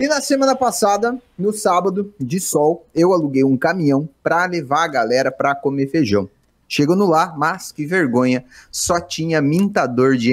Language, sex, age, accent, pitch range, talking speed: Portuguese, male, 30-49, Brazilian, 150-240 Hz, 165 wpm